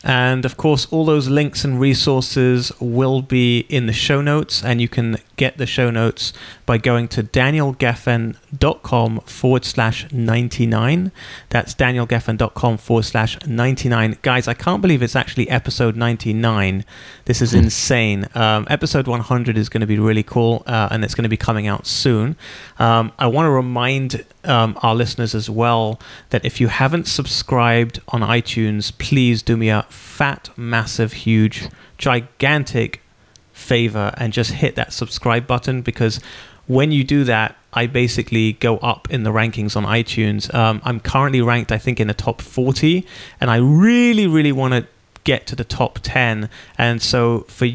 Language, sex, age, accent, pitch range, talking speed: English, male, 30-49, British, 110-130 Hz, 165 wpm